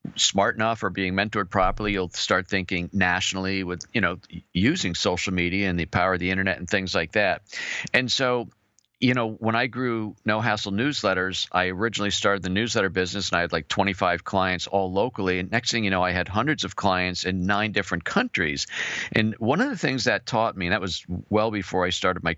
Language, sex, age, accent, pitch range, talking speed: English, male, 50-69, American, 90-115 Hz, 215 wpm